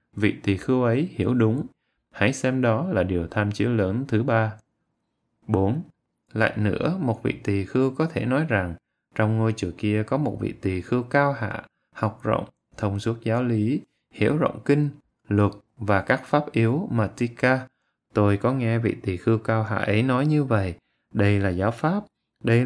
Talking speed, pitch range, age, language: 190 wpm, 105-130 Hz, 20-39, Vietnamese